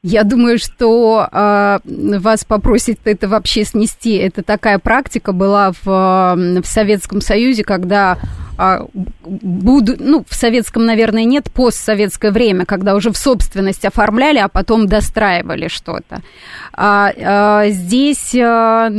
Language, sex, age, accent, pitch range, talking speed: Russian, female, 20-39, native, 195-230 Hz, 110 wpm